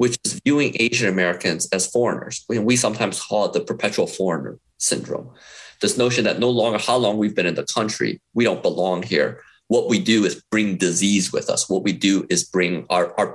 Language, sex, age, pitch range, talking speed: English, male, 30-49, 100-130 Hz, 205 wpm